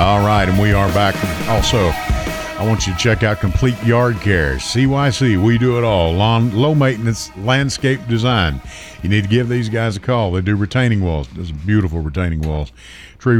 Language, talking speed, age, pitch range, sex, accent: English, 195 wpm, 50-69, 85-120 Hz, male, American